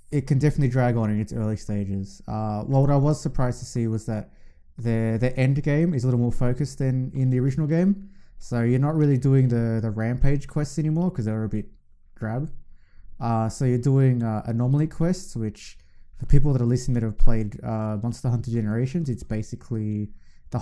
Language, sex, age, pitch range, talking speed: English, male, 20-39, 110-130 Hz, 205 wpm